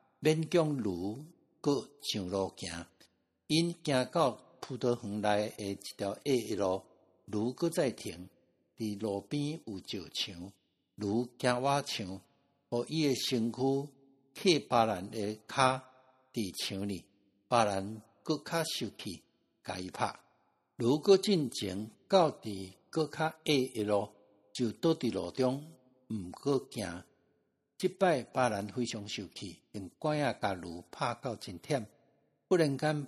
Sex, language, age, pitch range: male, Chinese, 60-79, 105-140 Hz